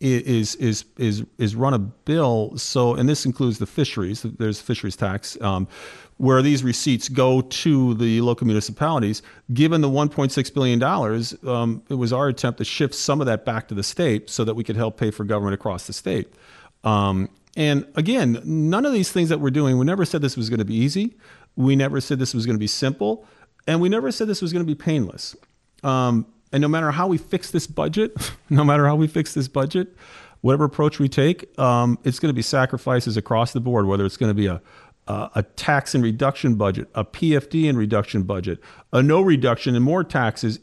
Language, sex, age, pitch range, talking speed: English, male, 40-59, 110-150 Hz, 215 wpm